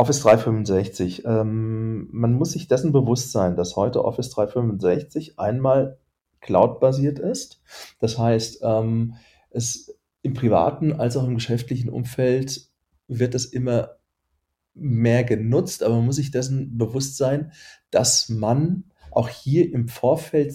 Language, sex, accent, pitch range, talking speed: German, male, German, 115-145 Hz, 130 wpm